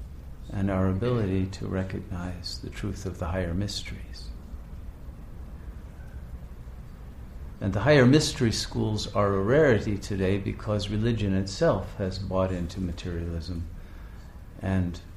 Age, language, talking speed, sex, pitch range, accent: 50-69, English, 110 wpm, male, 80-100 Hz, American